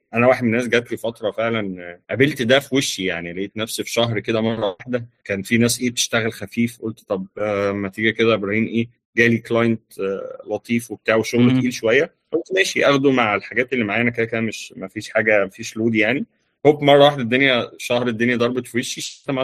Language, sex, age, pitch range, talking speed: Arabic, male, 30-49, 110-140 Hz, 220 wpm